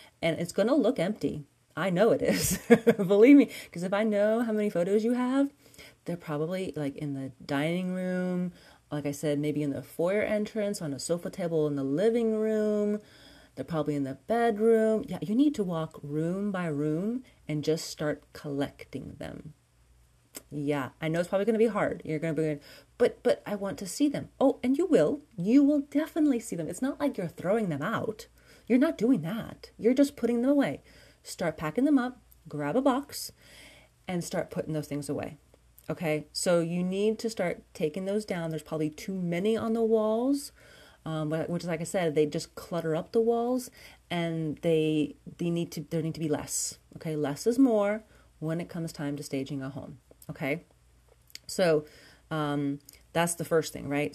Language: English